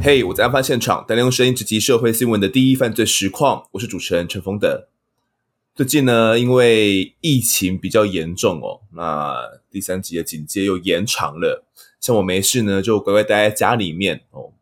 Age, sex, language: 20-39, male, Chinese